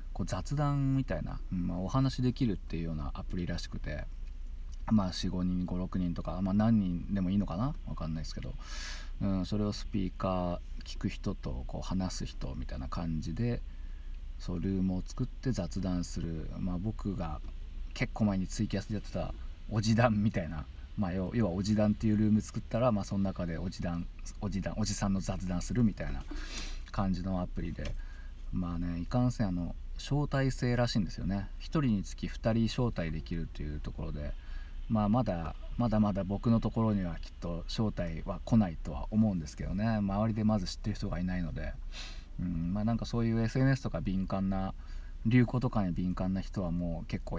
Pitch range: 80-105 Hz